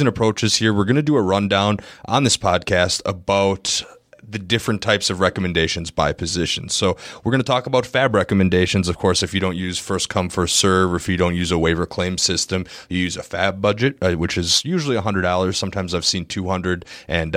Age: 30-49